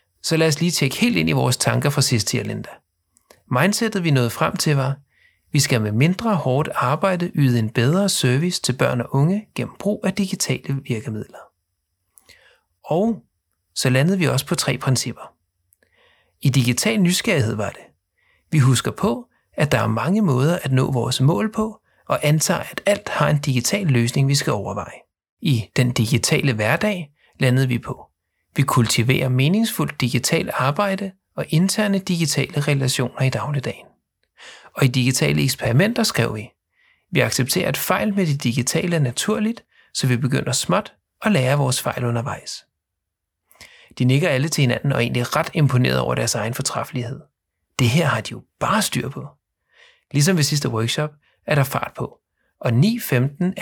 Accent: native